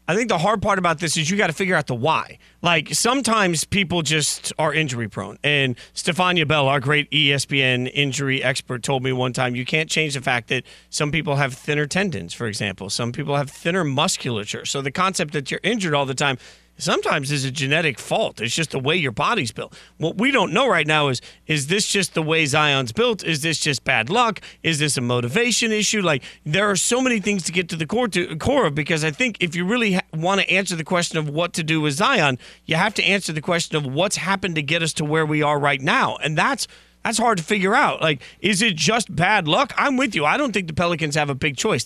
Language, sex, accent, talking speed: English, male, American, 240 wpm